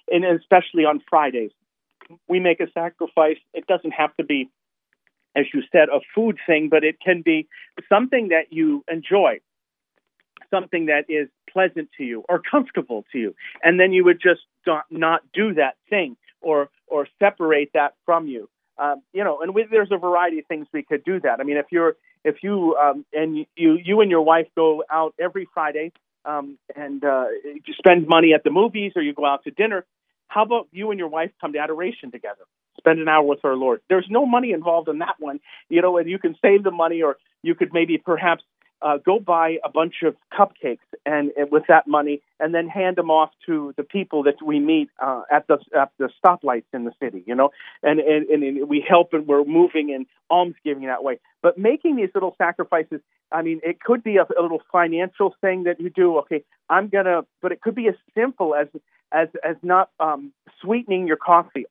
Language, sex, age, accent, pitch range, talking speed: English, male, 40-59, American, 155-190 Hz, 210 wpm